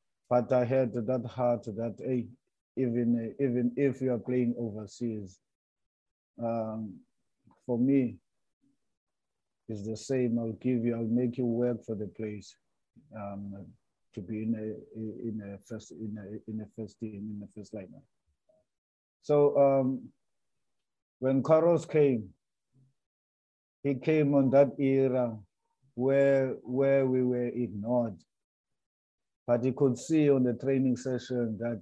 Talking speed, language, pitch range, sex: 140 wpm, English, 110-130 Hz, male